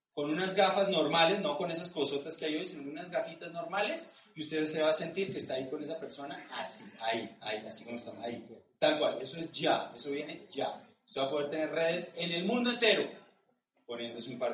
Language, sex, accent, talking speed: Spanish, male, Colombian, 225 wpm